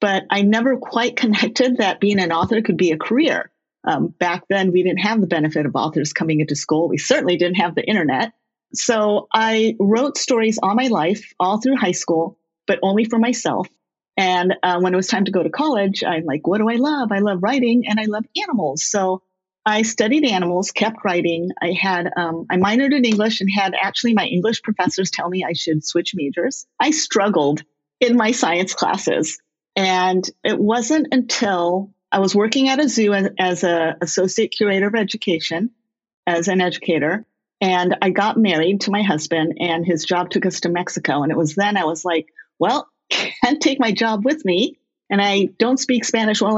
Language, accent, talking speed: English, American, 200 wpm